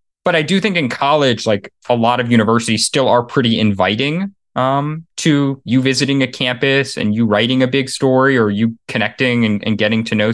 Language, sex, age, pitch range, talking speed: English, male, 20-39, 115-145 Hz, 205 wpm